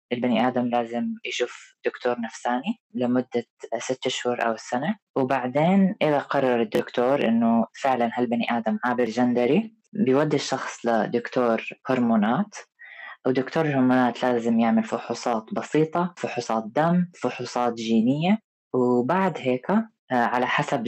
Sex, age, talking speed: female, 20-39, 115 wpm